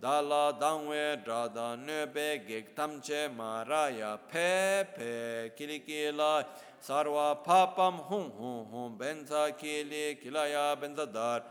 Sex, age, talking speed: male, 50-69, 105 wpm